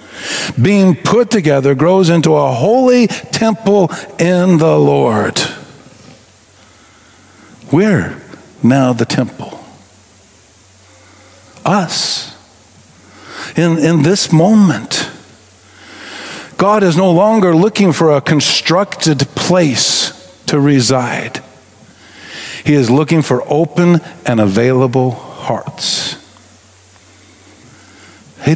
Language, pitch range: English, 110-165 Hz